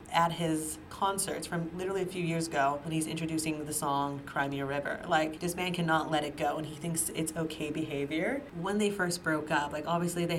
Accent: American